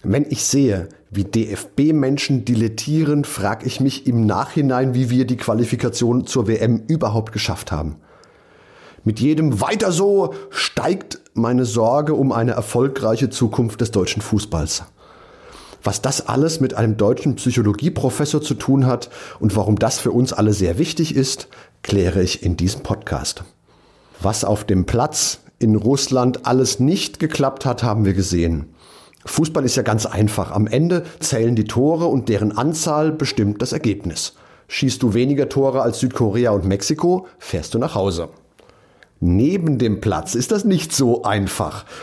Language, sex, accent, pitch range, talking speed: German, male, German, 105-135 Hz, 150 wpm